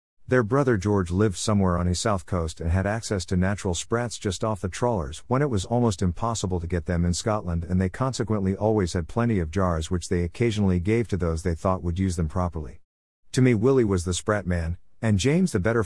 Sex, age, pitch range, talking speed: male, 50-69, 90-115 Hz, 225 wpm